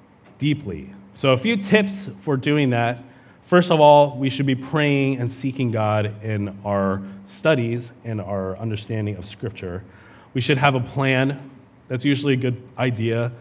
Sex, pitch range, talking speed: male, 100-130 Hz, 160 wpm